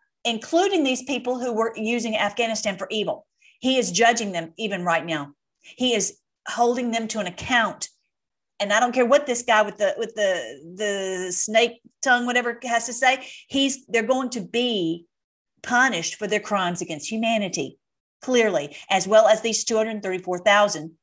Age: 40-59